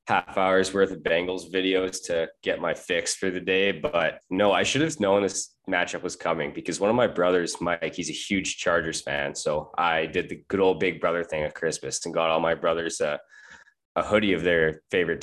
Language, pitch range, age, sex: English, 80-95 Hz, 20-39, male